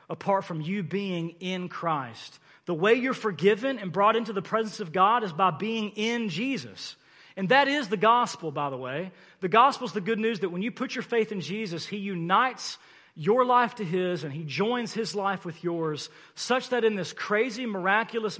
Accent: American